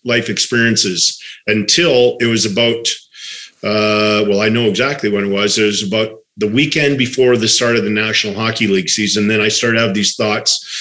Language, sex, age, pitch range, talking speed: English, male, 40-59, 110-130 Hz, 195 wpm